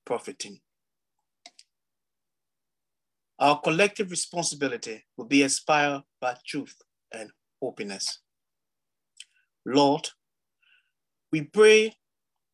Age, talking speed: 50-69, 65 wpm